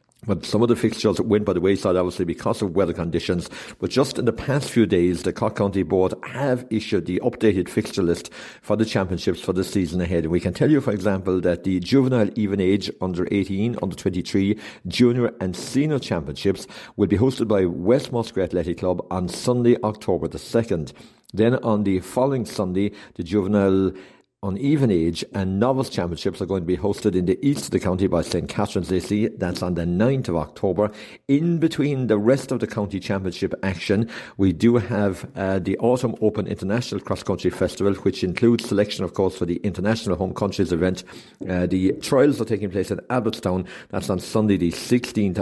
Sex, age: male, 60-79